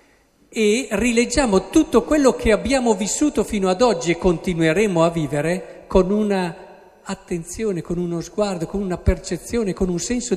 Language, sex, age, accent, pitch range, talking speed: Italian, male, 50-69, native, 160-225 Hz, 150 wpm